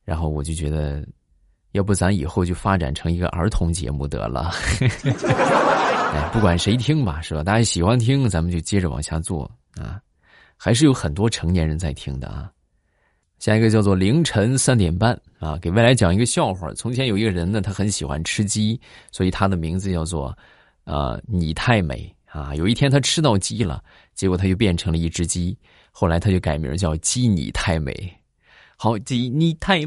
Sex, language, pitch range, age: male, Chinese, 80-115 Hz, 20-39